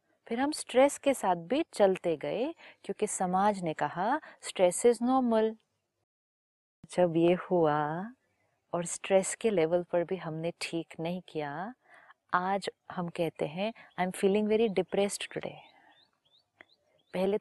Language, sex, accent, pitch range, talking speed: Hindi, female, native, 175-220 Hz, 135 wpm